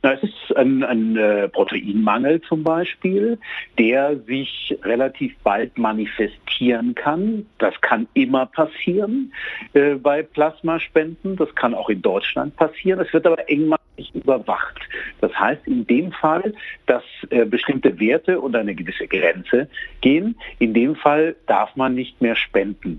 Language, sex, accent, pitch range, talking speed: German, male, German, 115-165 Hz, 140 wpm